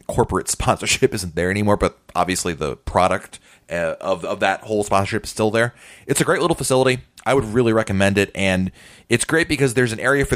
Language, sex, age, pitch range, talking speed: English, male, 30-49, 95-130 Hz, 210 wpm